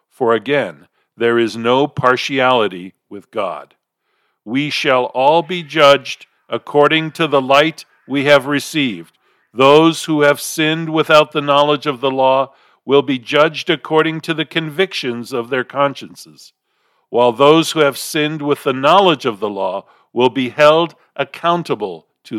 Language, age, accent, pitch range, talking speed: English, 50-69, American, 130-160 Hz, 150 wpm